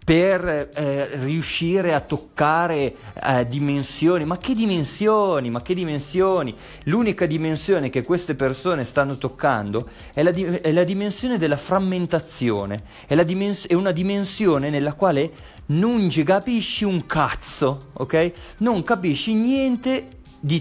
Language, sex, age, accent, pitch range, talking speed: Italian, male, 30-49, native, 135-195 Hz, 135 wpm